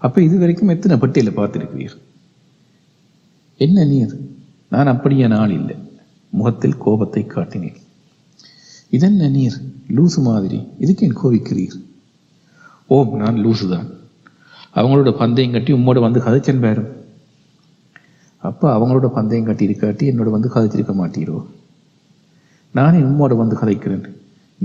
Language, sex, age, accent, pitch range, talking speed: Tamil, male, 50-69, native, 110-140 Hz, 110 wpm